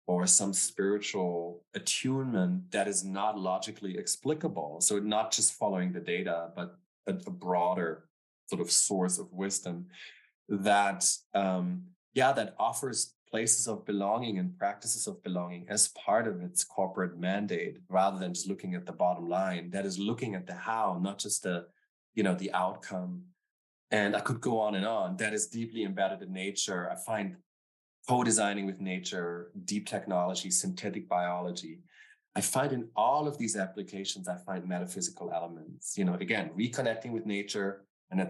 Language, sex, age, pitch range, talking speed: English, male, 20-39, 90-115 Hz, 160 wpm